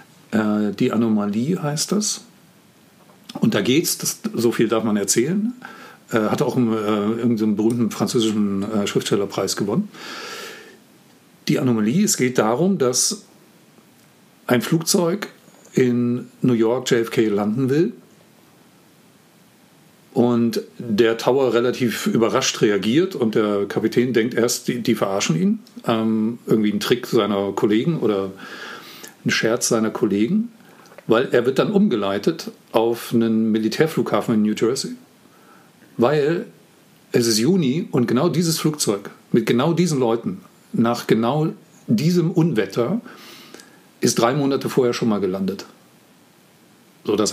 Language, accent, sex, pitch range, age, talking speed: German, German, male, 115-185 Hz, 50-69, 125 wpm